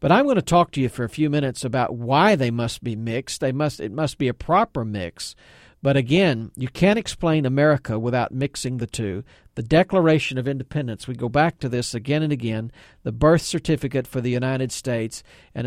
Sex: male